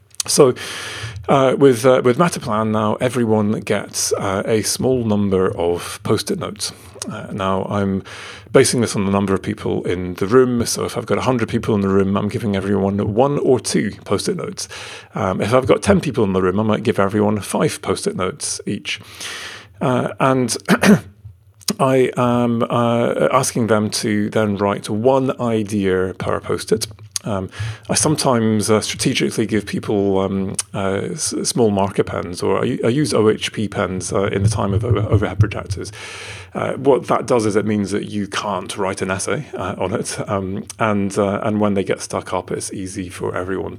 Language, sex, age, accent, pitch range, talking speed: English, male, 30-49, British, 100-115 Hz, 180 wpm